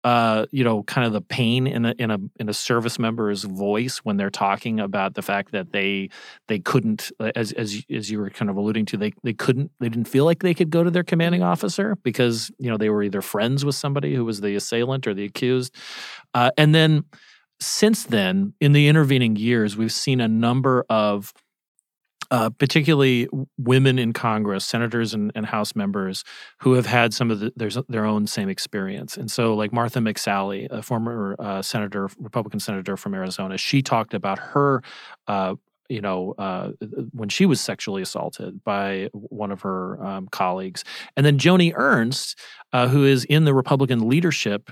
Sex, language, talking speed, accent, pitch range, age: male, English, 190 wpm, American, 105-135 Hz, 40-59